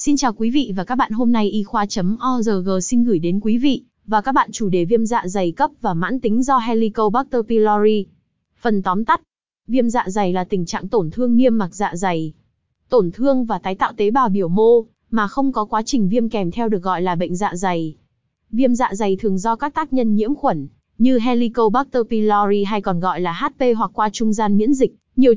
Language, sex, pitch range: Vietnamese, female, 195-245 Hz